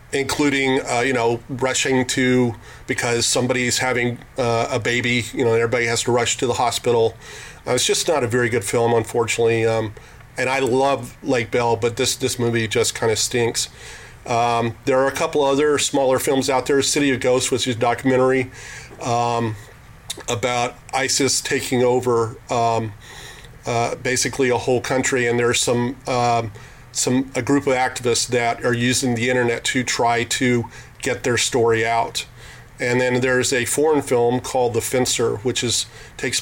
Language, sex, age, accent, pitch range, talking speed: English, male, 40-59, American, 115-130 Hz, 175 wpm